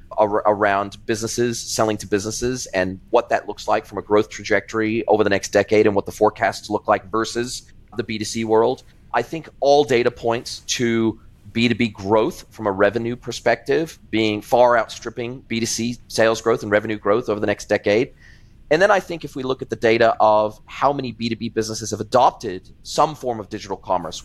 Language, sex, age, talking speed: English, male, 30-49, 185 wpm